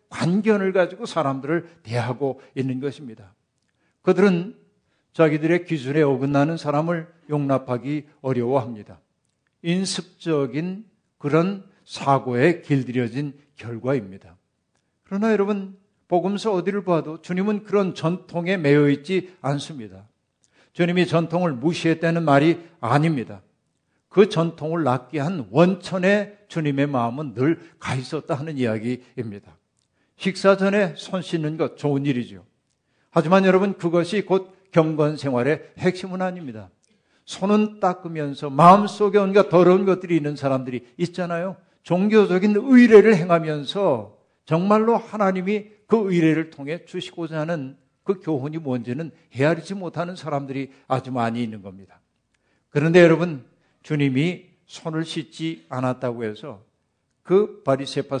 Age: 50-69